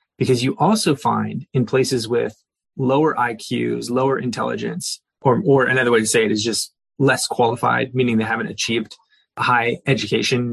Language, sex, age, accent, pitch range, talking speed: English, male, 20-39, American, 120-155 Hz, 160 wpm